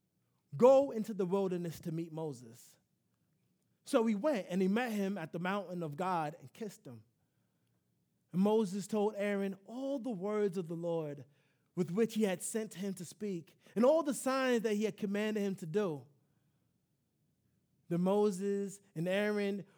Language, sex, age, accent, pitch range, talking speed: English, male, 20-39, American, 160-210 Hz, 165 wpm